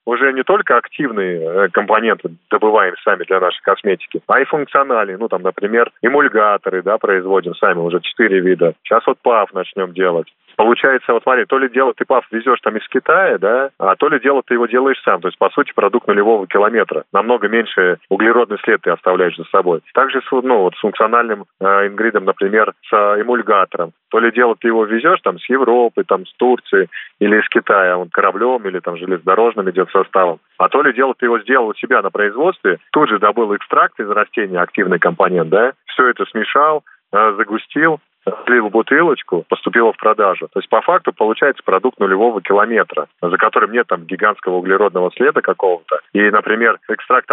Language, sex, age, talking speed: Russian, male, 30-49, 185 wpm